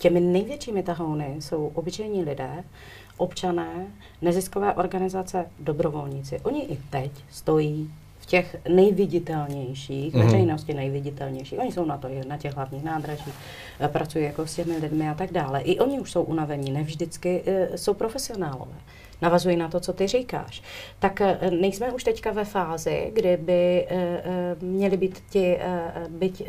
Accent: native